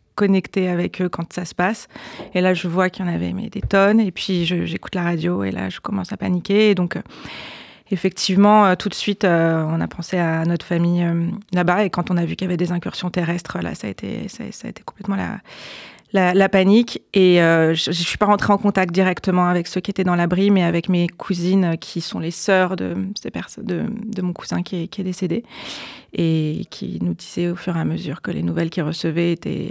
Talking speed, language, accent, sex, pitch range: 245 wpm, French, French, female, 170-195 Hz